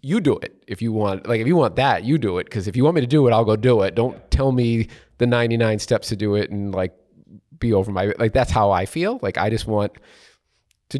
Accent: American